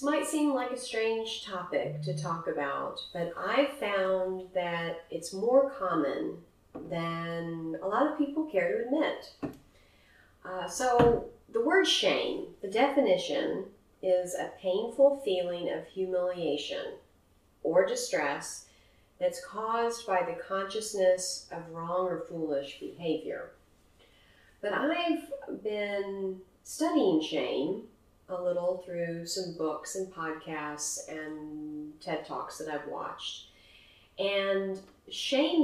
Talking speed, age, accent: 115 wpm, 30-49, American